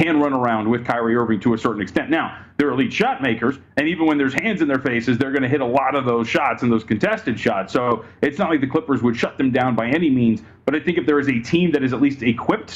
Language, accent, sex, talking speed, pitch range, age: English, American, male, 285 wpm, 125-160 Hz, 40-59